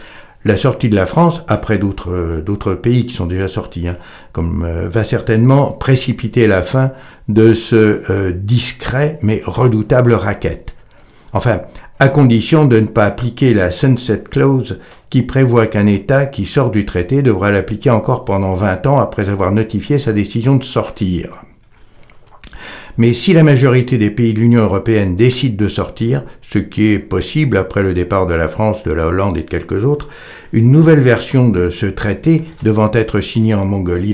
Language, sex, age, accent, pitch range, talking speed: French, male, 60-79, French, 100-125 Hz, 180 wpm